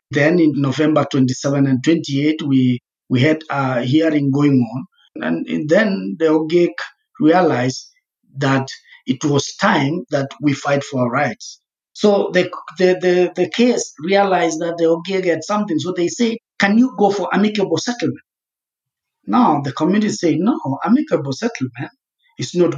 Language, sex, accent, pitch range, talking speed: English, male, South African, 140-200 Hz, 160 wpm